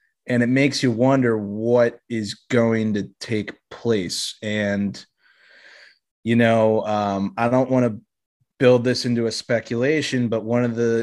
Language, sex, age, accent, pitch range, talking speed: English, male, 30-49, American, 110-125 Hz, 150 wpm